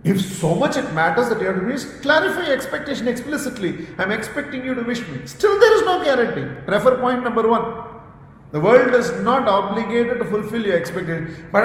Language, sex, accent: English, male, Indian